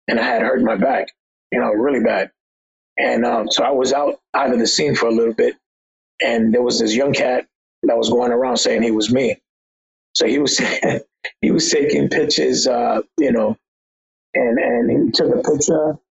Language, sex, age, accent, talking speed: English, male, 30-49, American, 200 wpm